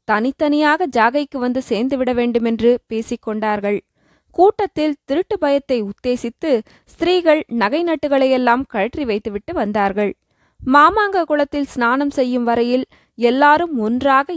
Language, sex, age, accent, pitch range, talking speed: Tamil, female, 20-39, native, 225-295 Hz, 90 wpm